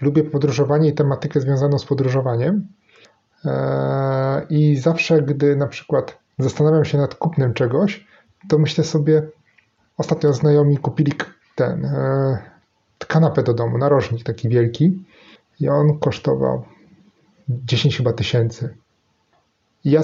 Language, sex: Polish, male